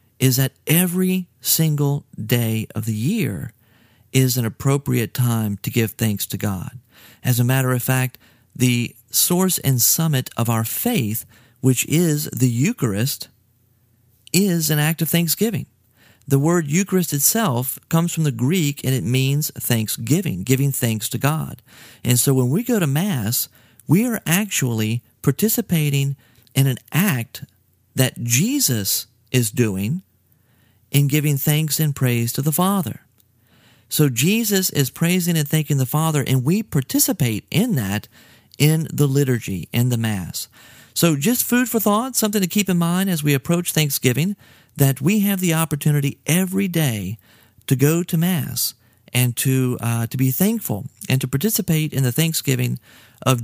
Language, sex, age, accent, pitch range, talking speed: English, male, 40-59, American, 115-160 Hz, 155 wpm